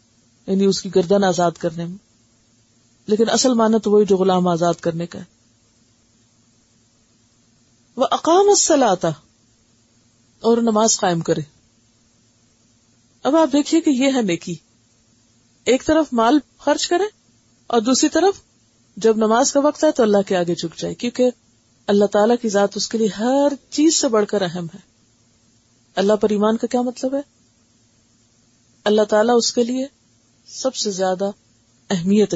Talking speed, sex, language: 150 wpm, female, Urdu